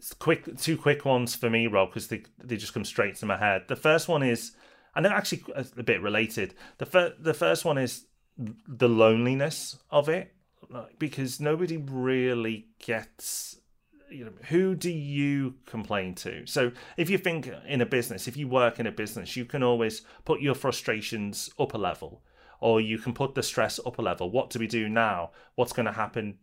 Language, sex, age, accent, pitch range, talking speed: English, male, 30-49, British, 110-130 Hz, 200 wpm